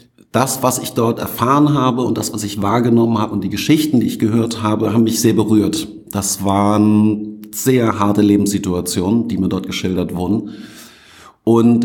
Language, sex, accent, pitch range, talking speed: German, male, German, 100-115 Hz, 170 wpm